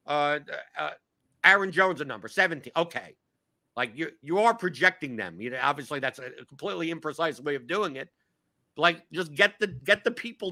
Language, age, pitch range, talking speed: English, 50-69, 140-185 Hz, 185 wpm